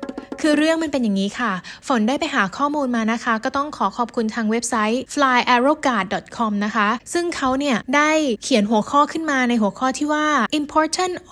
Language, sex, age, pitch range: Thai, female, 20-39, 215-270 Hz